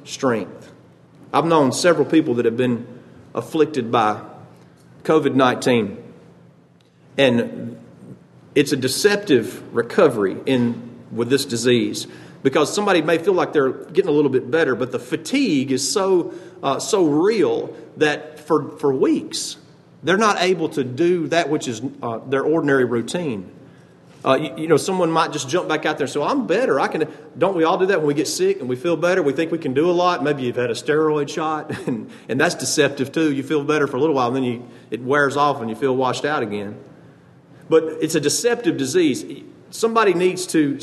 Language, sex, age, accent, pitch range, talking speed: English, male, 40-59, American, 130-180 Hz, 190 wpm